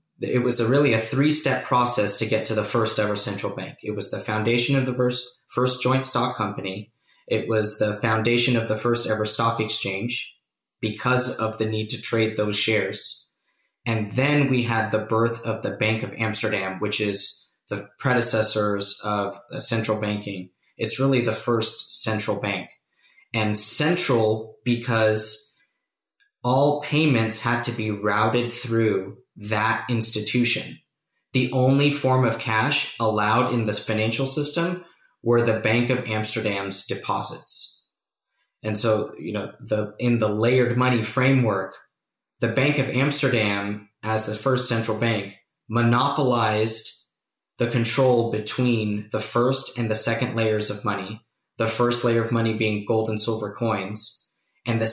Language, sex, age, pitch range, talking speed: English, male, 20-39, 110-125 Hz, 150 wpm